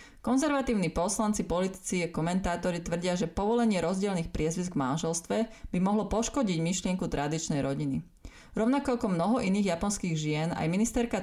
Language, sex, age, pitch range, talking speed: Slovak, female, 20-39, 155-200 Hz, 140 wpm